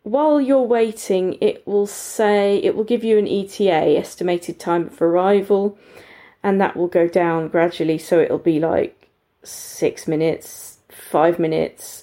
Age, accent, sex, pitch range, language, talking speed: 30-49, British, female, 170-210 Hz, English, 150 wpm